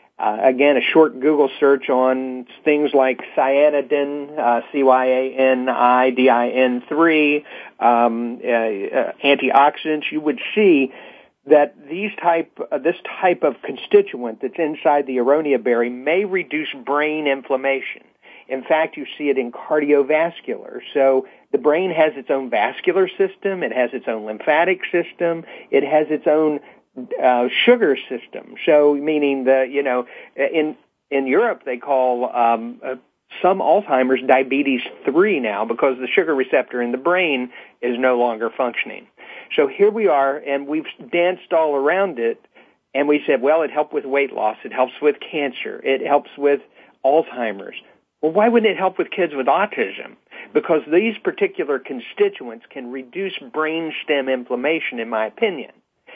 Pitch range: 130-160 Hz